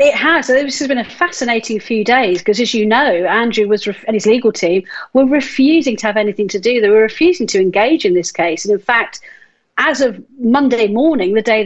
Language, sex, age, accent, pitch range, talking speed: English, female, 40-59, British, 210-255 Hz, 230 wpm